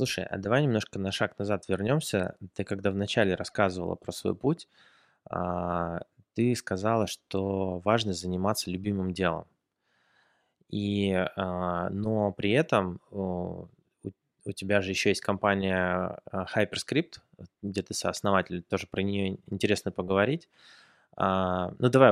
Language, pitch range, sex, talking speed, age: Russian, 90-110 Hz, male, 115 wpm, 20-39